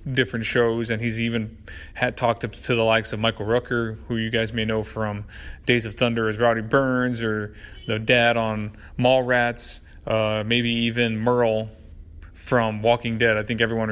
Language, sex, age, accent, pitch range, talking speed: English, male, 30-49, American, 110-135 Hz, 175 wpm